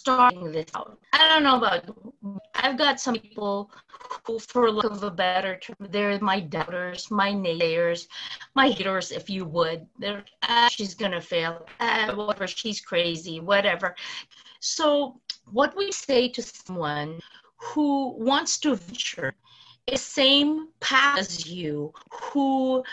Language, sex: English, female